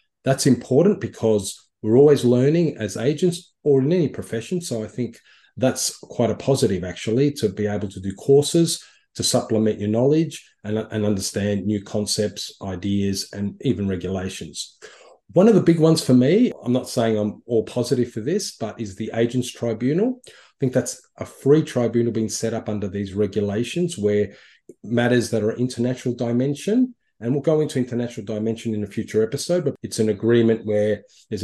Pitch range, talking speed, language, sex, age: 105-135 Hz, 180 wpm, English, male, 40-59